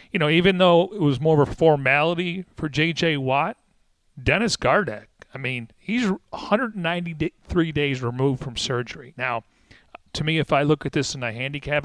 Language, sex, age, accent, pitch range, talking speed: English, male, 40-59, American, 130-165 Hz, 170 wpm